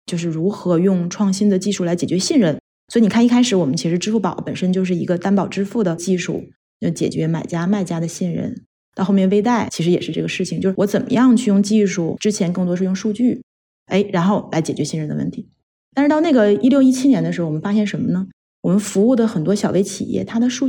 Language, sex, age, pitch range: Chinese, female, 20-39, 170-220 Hz